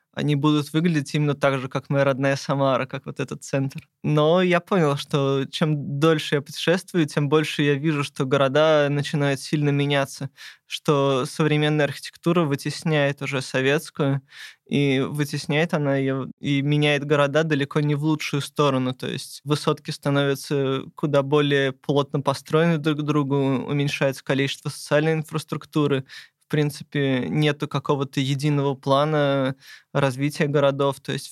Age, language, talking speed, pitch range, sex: 20-39, Russian, 140 wpm, 140-150 Hz, male